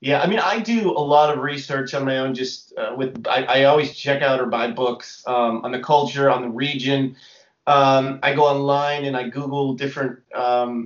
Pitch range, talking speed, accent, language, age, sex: 130-150 Hz, 210 wpm, American, English, 30-49, male